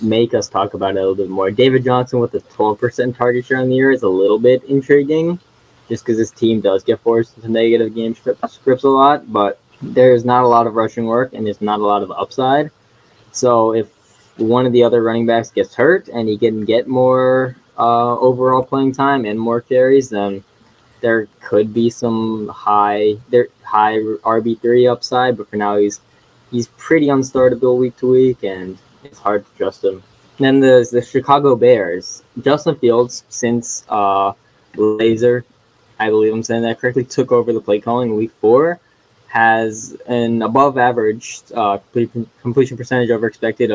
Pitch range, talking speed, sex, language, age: 110-130 Hz, 185 wpm, male, English, 10-29